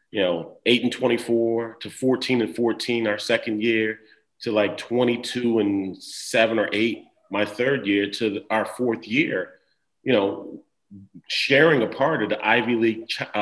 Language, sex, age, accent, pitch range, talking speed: English, male, 40-59, American, 110-125 Hz, 165 wpm